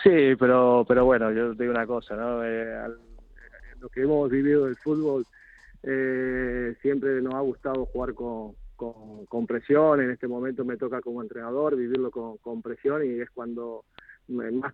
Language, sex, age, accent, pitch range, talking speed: Spanish, male, 20-39, Argentinian, 125-145 Hz, 175 wpm